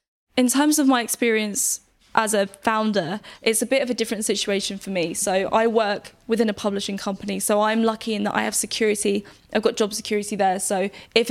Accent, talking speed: British, 205 wpm